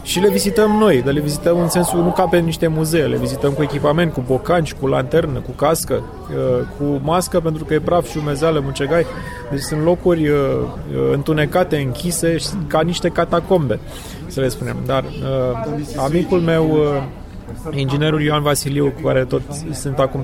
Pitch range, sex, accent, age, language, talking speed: 130-160 Hz, male, native, 20-39, Romanian, 160 wpm